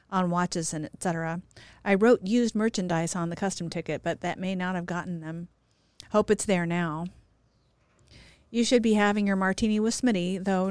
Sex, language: female, English